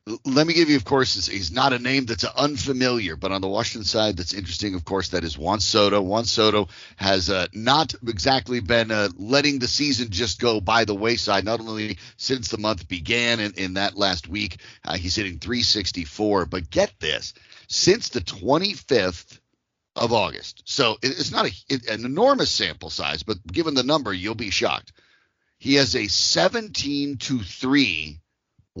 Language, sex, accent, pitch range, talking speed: English, male, American, 100-135 Hz, 170 wpm